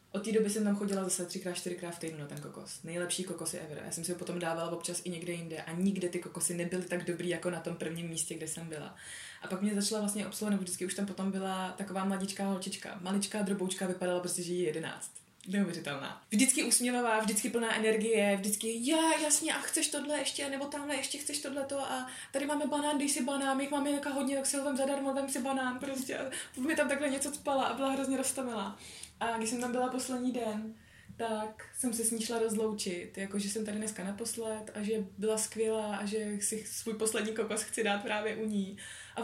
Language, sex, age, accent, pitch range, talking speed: Czech, female, 20-39, native, 195-255 Hz, 215 wpm